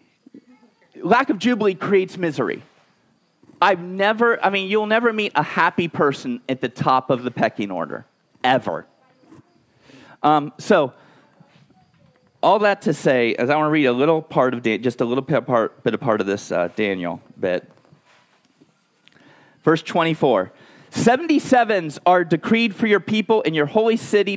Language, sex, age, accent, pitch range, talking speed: English, male, 40-59, American, 160-220 Hz, 155 wpm